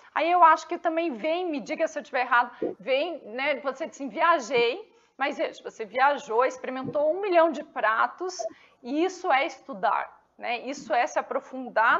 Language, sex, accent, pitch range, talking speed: Portuguese, female, Brazilian, 255-340 Hz, 180 wpm